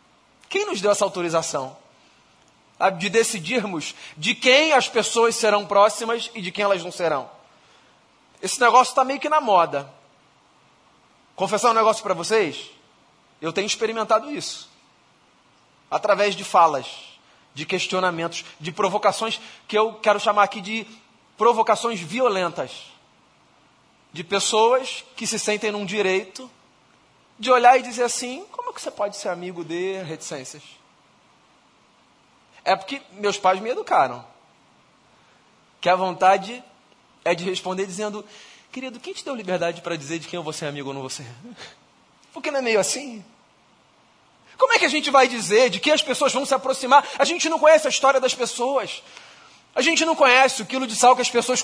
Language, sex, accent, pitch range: Portuguese, male, Brazilian, 190-255 Hz